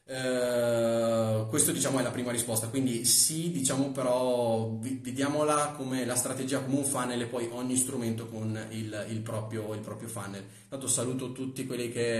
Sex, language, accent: male, Italian, native